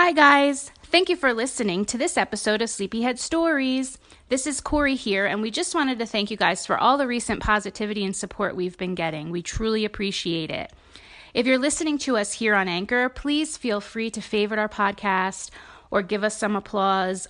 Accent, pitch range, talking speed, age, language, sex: American, 190-240 Hz, 200 wpm, 30-49, English, female